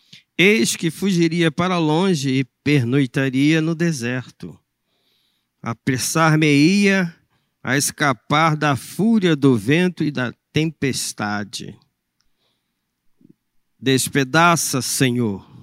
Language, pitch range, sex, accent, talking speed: Portuguese, 130-165 Hz, male, Brazilian, 80 wpm